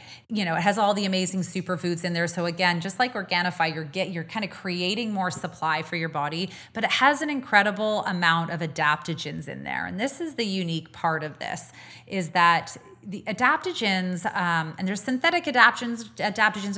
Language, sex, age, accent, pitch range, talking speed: English, female, 30-49, American, 170-205 Hz, 190 wpm